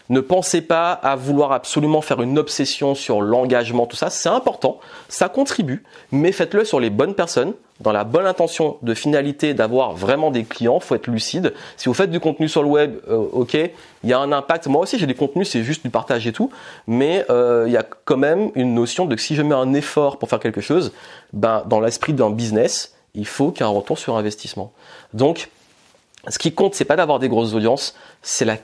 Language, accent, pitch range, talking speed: French, French, 120-155 Hz, 225 wpm